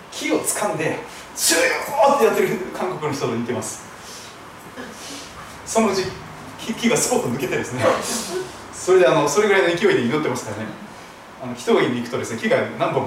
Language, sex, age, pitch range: Japanese, male, 40-59, 215-305 Hz